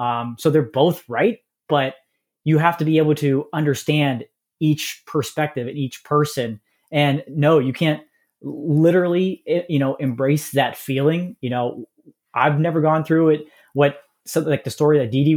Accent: American